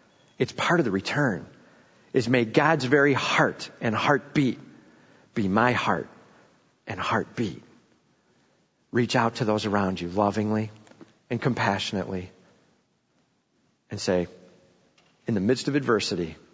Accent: American